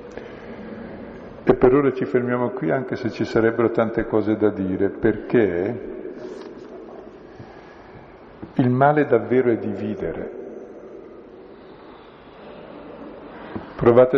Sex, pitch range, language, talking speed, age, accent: male, 110-165 Hz, Italian, 90 wpm, 50-69, native